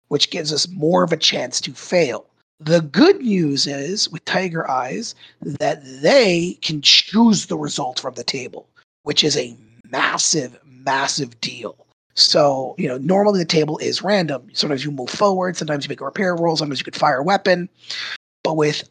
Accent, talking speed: American, 180 wpm